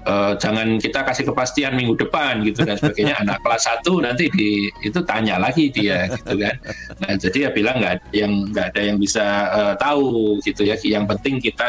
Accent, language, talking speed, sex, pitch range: native, Indonesian, 195 wpm, male, 95-115 Hz